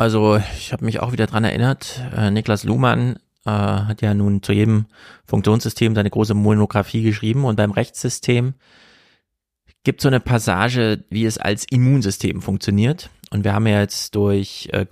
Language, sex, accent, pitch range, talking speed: German, male, German, 100-115 Hz, 160 wpm